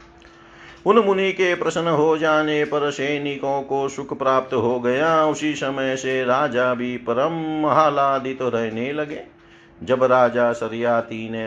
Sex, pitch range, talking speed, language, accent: male, 105-140 Hz, 135 wpm, Hindi, native